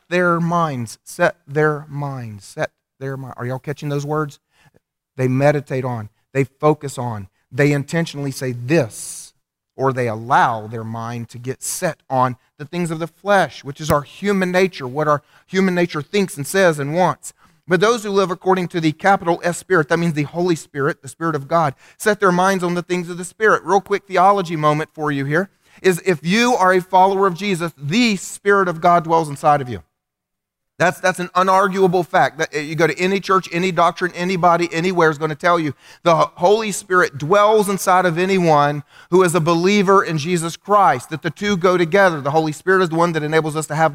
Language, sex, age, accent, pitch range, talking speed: English, male, 40-59, American, 150-185 Hz, 210 wpm